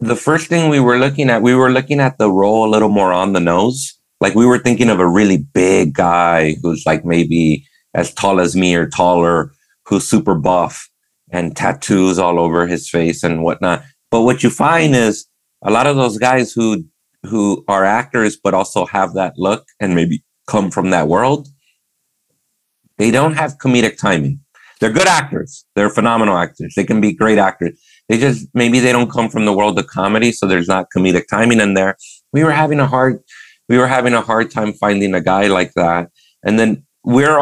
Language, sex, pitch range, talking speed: English, male, 95-125 Hz, 200 wpm